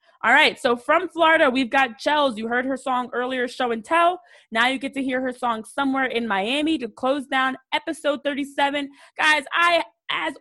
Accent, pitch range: American, 235-295 Hz